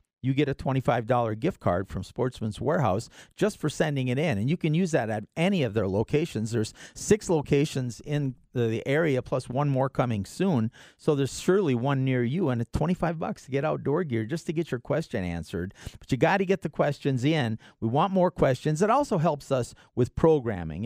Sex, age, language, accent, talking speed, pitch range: male, 40-59, English, American, 205 wpm, 115-160 Hz